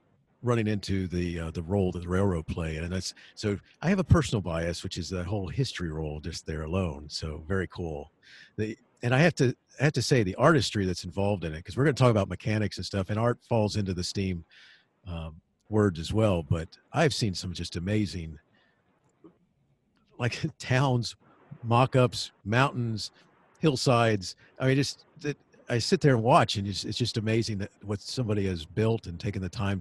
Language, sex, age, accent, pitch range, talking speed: English, male, 50-69, American, 90-120 Hz, 200 wpm